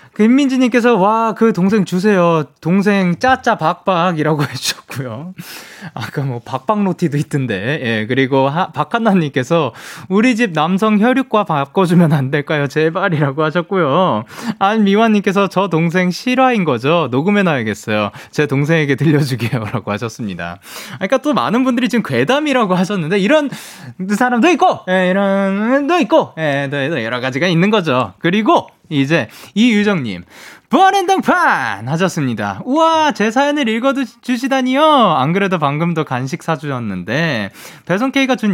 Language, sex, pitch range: Korean, male, 140-220 Hz